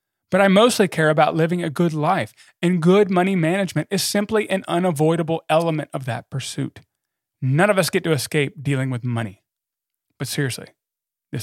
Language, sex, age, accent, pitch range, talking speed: English, male, 30-49, American, 135-190 Hz, 175 wpm